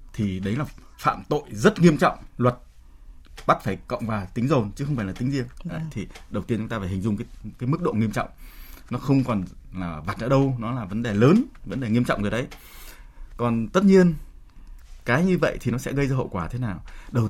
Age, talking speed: 20-39, 240 wpm